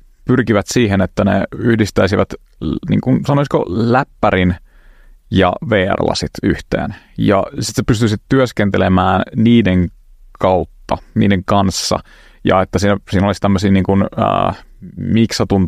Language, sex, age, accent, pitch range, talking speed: Finnish, male, 30-49, native, 95-110 Hz, 105 wpm